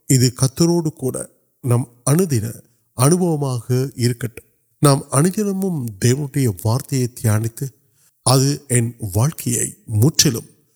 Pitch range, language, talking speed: 115-140 Hz, Urdu, 55 wpm